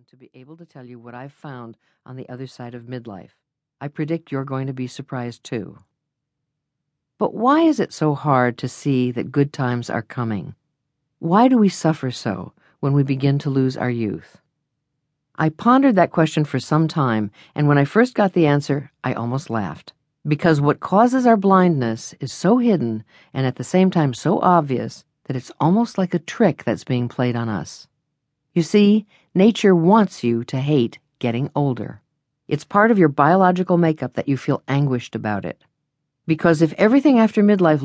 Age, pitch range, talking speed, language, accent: 50-69, 130-170 Hz, 185 wpm, English, American